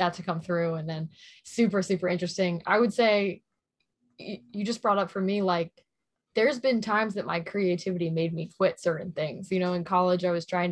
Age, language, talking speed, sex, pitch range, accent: 20-39, English, 205 wpm, female, 175-195 Hz, American